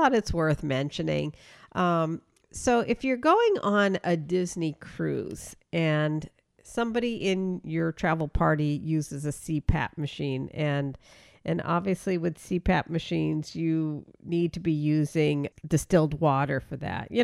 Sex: female